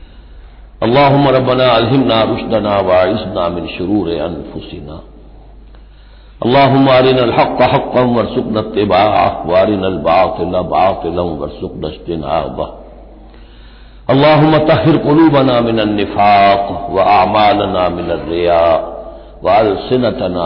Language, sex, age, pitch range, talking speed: Hindi, male, 60-79, 85-120 Hz, 80 wpm